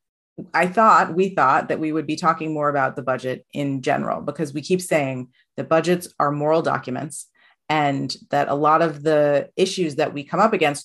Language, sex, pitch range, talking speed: English, female, 145-185 Hz, 200 wpm